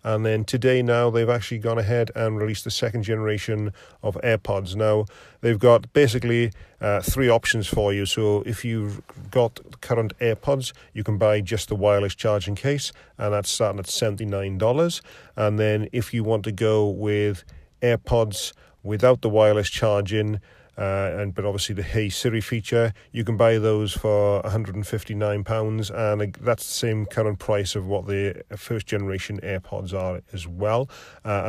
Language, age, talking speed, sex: English, 40-59, 165 wpm, male